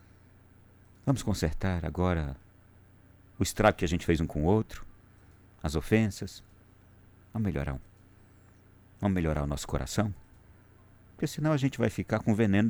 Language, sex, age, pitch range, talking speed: Portuguese, male, 50-69, 95-110 Hz, 145 wpm